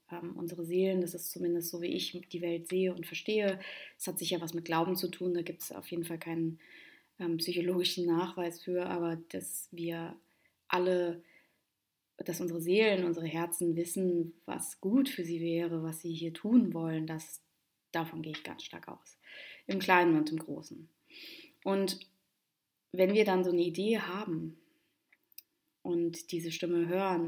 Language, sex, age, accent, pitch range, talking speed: German, female, 20-39, German, 165-185 Hz, 170 wpm